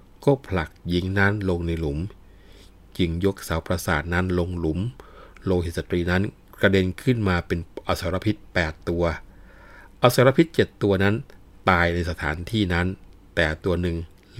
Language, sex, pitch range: Thai, male, 85-100 Hz